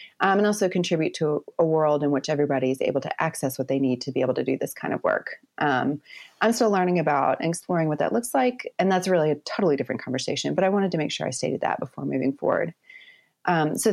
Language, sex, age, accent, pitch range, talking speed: English, female, 30-49, American, 145-190 Hz, 250 wpm